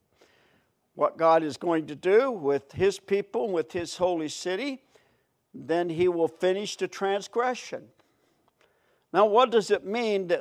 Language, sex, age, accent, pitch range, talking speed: English, male, 60-79, American, 155-215 Hz, 140 wpm